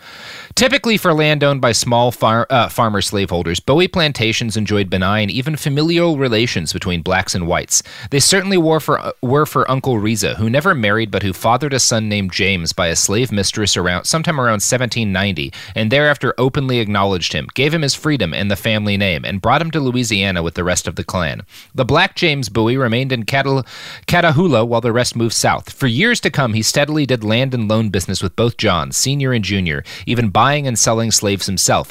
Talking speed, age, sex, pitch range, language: 205 wpm, 30-49, male, 100-135 Hz, English